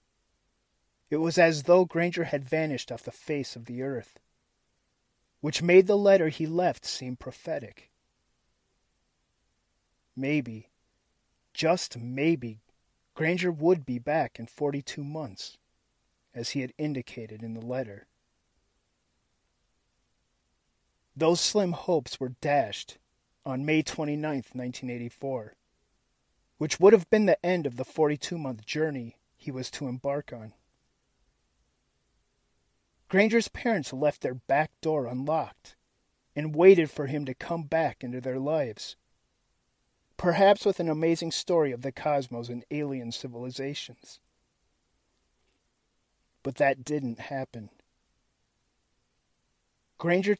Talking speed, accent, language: 115 wpm, American, English